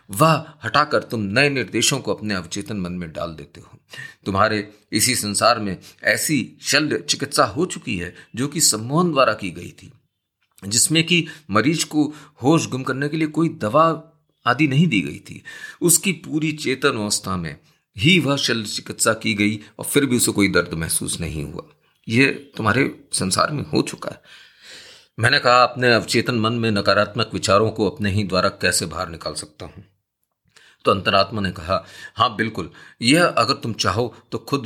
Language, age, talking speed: Hindi, 40-59, 175 wpm